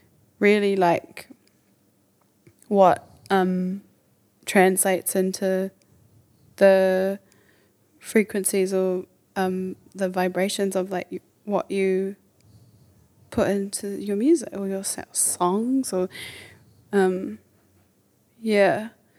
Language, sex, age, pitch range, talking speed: English, female, 20-39, 130-200 Hz, 80 wpm